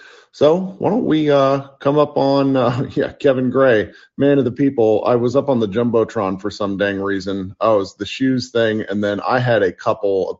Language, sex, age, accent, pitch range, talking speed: English, male, 30-49, American, 100-125 Hz, 220 wpm